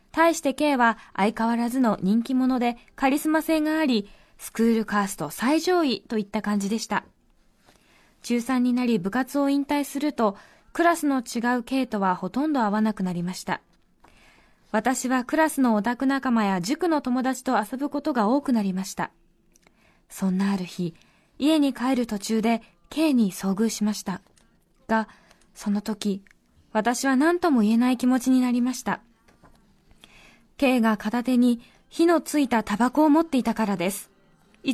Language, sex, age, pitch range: Japanese, female, 20-39, 215-275 Hz